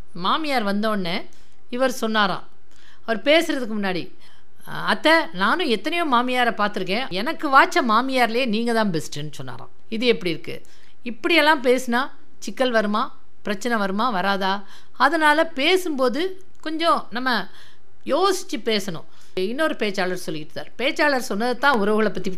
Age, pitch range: 50-69, 200-295 Hz